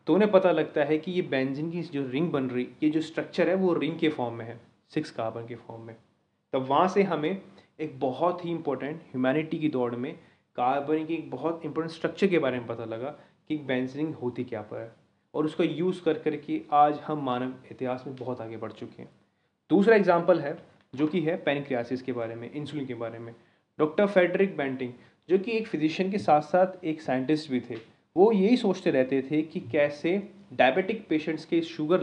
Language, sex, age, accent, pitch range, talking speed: Hindi, male, 30-49, native, 130-170 Hz, 205 wpm